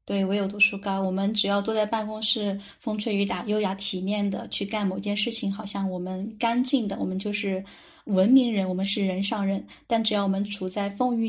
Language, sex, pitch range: Chinese, female, 195-230 Hz